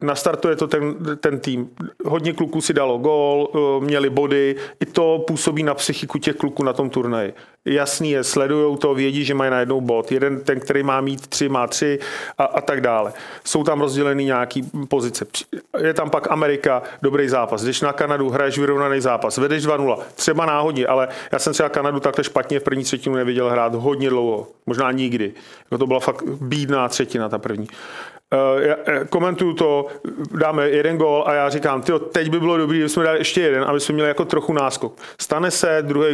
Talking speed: 195 wpm